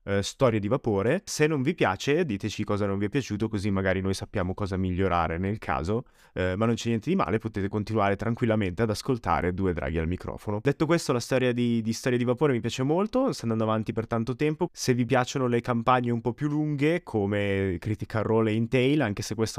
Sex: male